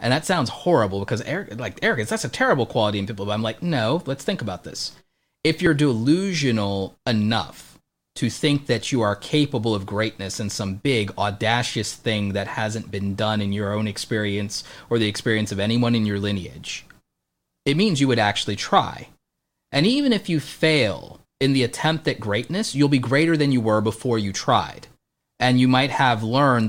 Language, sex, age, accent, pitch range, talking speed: English, male, 30-49, American, 105-130 Hz, 190 wpm